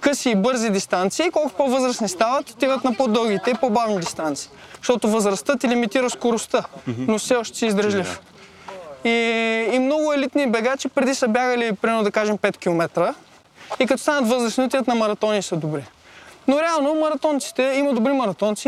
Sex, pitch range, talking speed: male, 210-280 Hz, 160 wpm